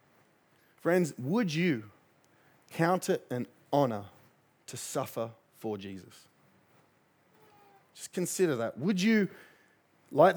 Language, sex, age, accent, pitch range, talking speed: English, male, 30-49, Australian, 140-180 Hz, 100 wpm